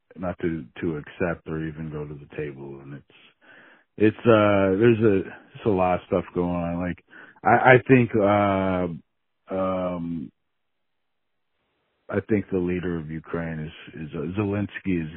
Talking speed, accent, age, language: 160 wpm, American, 50-69, English